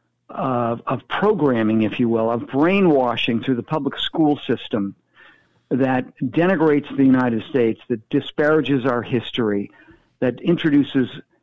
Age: 50-69